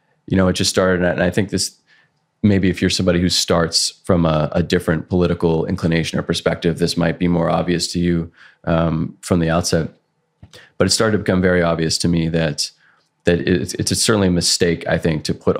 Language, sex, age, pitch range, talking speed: English, male, 30-49, 80-90 Hz, 210 wpm